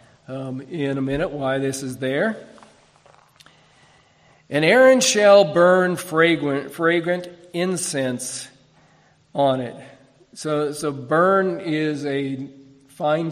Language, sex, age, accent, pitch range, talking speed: English, male, 50-69, American, 135-165 Hz, 105 wpm